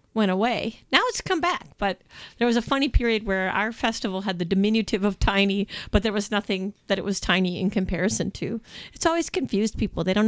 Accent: American